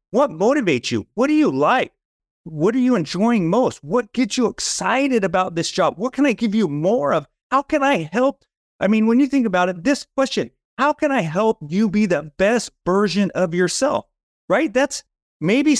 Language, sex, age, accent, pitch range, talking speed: English, male, 30-49, American, 185-255 Hz, 200 wpm